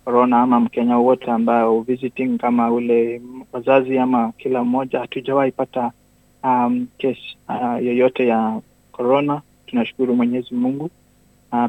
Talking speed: 125 wpm